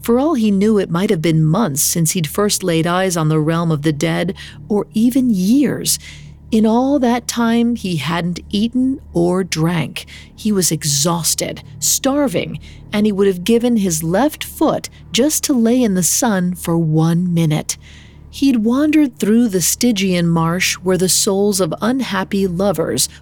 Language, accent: English, American